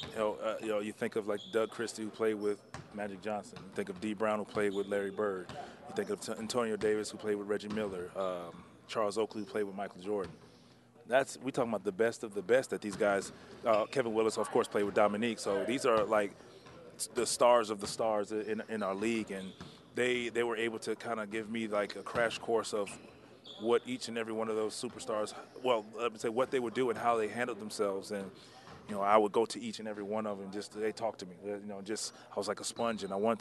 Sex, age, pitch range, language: male, 30-49, 100-110 Hz, English